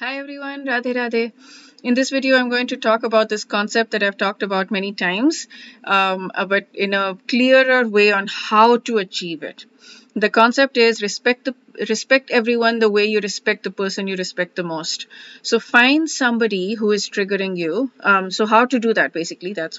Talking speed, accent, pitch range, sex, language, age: 190 wpm, Indian, 190-240 Hz, female, English, 30-49